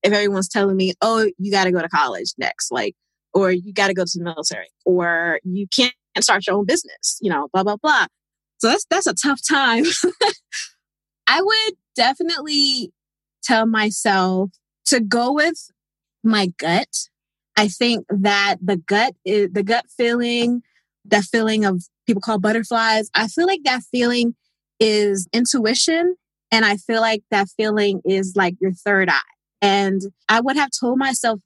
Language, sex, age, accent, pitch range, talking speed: English, female, 20-39, American, 200-245 Hz, 170 wpm